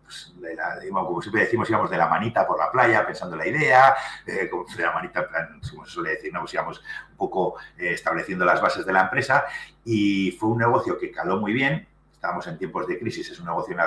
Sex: male